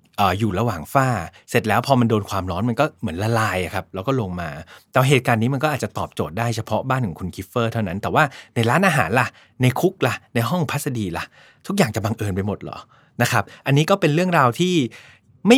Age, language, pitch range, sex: 20-39, Thai, 110-145 Hz, male